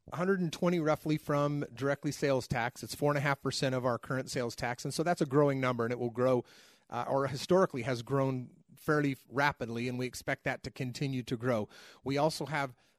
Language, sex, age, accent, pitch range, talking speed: English, male, 30-49, American, 125-150 Hz, 210 wpm